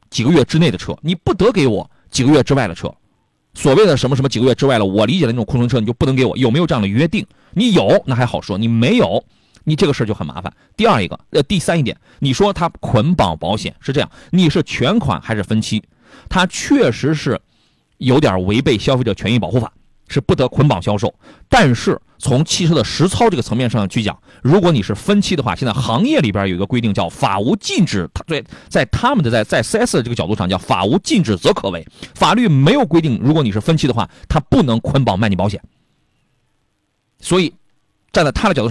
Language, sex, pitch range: Chinese, male, 110-160 Hz